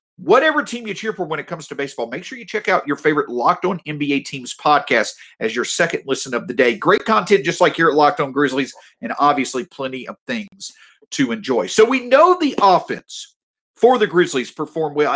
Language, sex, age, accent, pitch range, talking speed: English, male, 50-69, American, 165-245 Hz, 220 wpm